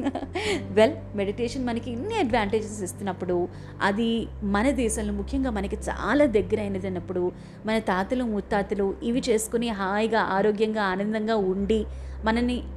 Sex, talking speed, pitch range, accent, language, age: female, 120 wpm, 195-245 Hz, native, Telugu, 30-49